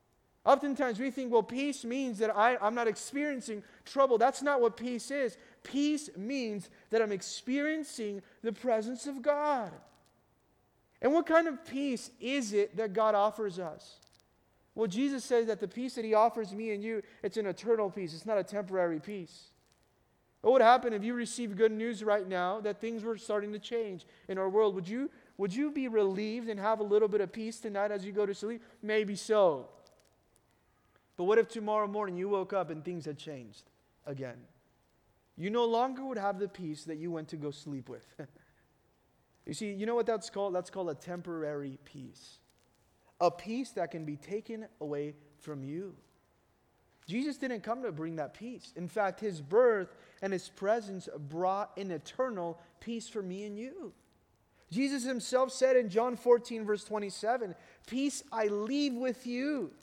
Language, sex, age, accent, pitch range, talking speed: English, male, 30-49, American, 190-245 Hz, 180 wpm